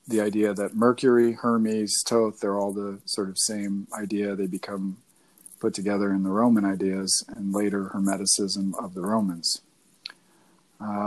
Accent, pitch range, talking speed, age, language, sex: American, 100-115 Hz, 150 wpm, 40-59, English, male